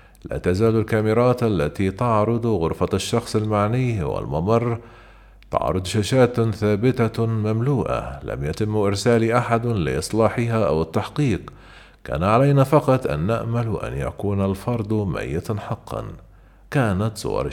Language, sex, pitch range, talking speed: Arabic, male, 100-120 Hz, 110 wpm